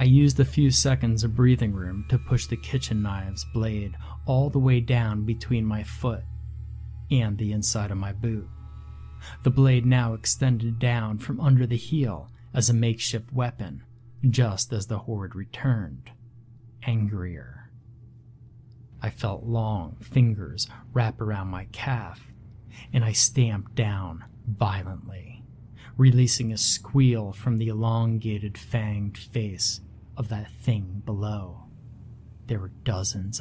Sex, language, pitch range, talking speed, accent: male, English, 105-125 Hz, 135 wpm, American